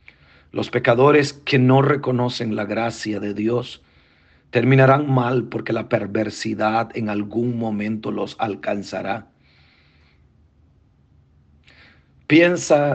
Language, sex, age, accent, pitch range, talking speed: Spanish, male, 40-59, Mexican, 80-130 Hz, 95 wpm